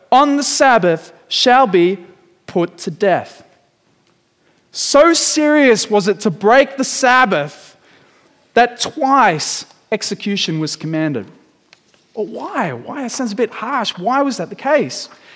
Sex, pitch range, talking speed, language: male, 170-245 Hz, 130 wpm, English